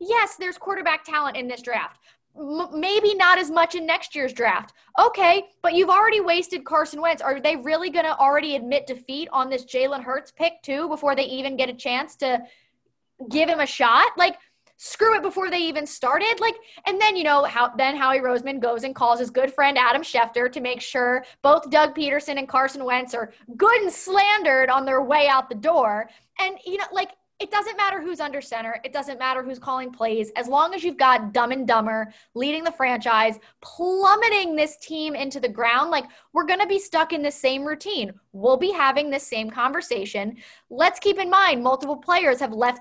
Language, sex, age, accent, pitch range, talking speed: English, female, 20-39, American, 250-335 Hz, 205 wpm